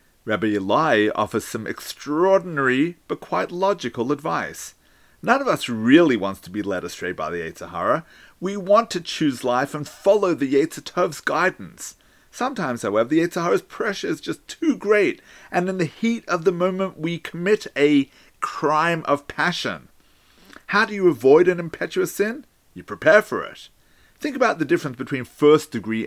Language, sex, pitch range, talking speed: English, male, 130-190 Hz, 160 wpm